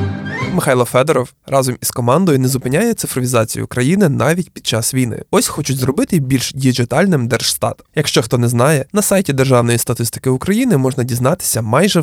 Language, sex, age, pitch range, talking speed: Ukrainian, male, 20-39, 120-165 Hz, 155 wpm